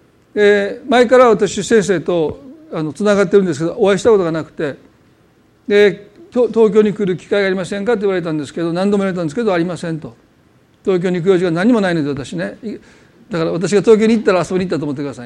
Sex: male